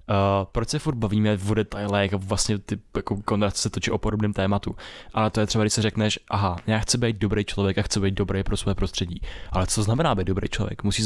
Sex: male